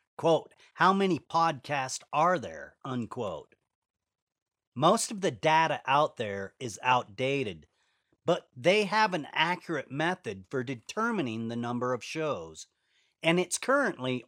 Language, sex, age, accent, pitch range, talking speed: English, male, 40-59, American, 120-170 Hz, 125 wpm